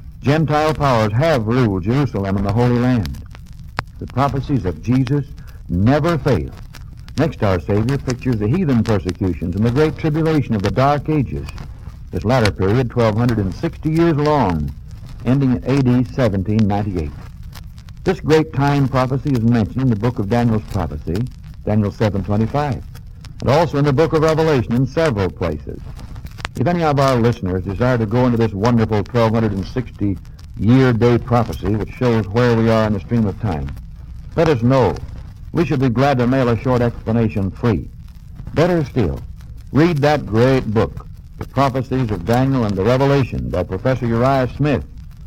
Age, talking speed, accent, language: 60-79, 155 wpm, American, English